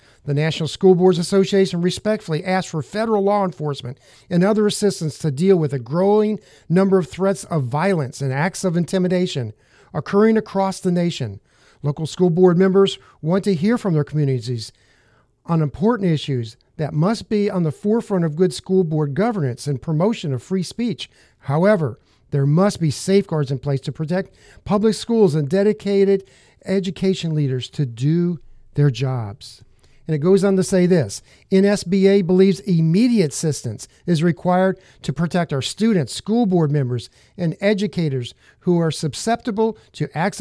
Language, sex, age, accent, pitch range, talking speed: English, male, 50-69, American, 145-195 Hz, 160 wpm